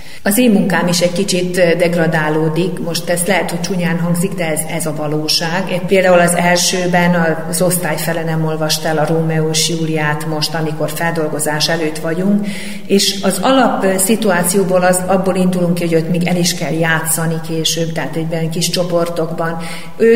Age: 40-59